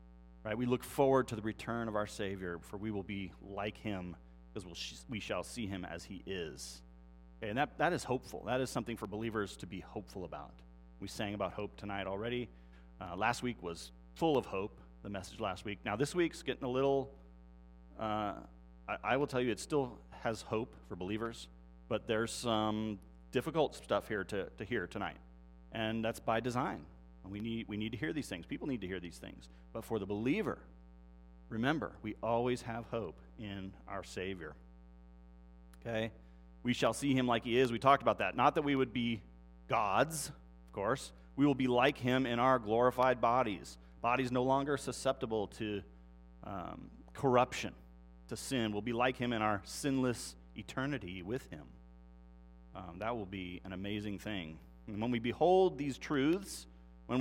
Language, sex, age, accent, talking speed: English, male, 30-49, American, 180 wpm